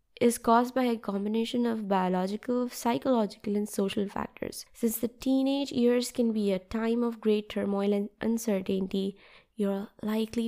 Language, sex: English, female